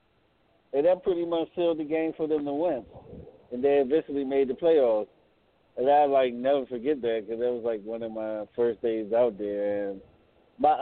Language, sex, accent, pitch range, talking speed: English, male, American, 110-140 Hz, 200 wpm